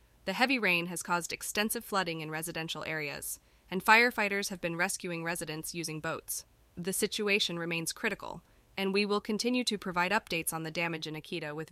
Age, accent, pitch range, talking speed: 20-39, American, 165-210 Hz, 180 wpm